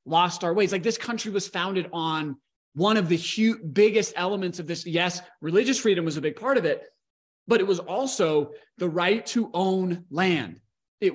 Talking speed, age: 190 wpm, 30-49